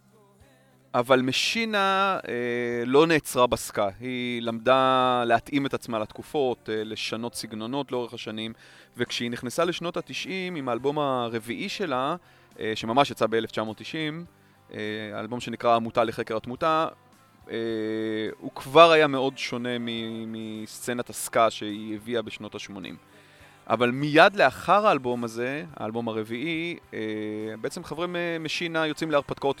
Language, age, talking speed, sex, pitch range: Hebrew, 30-49, 125 wpm, male, 110-140 Hz